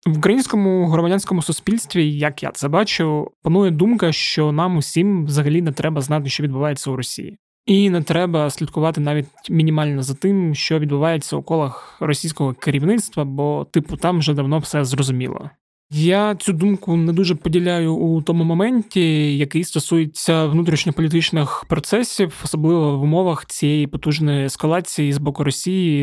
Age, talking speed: 20-39, 150 wpm